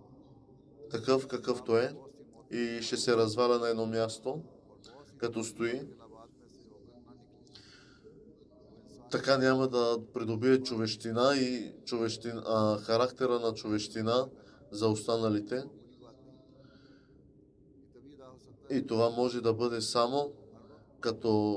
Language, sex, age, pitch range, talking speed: Bulgarian, male, 20-39, 110-130 Hz, 90 wpm